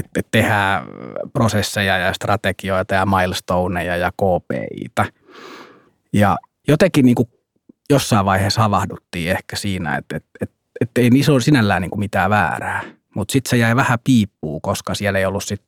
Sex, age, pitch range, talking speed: male, 30-49, 95-110 Hz, 160 wpm